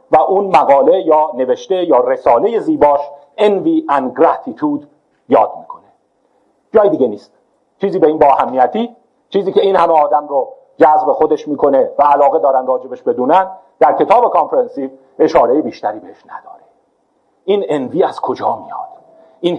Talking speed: 145 wpm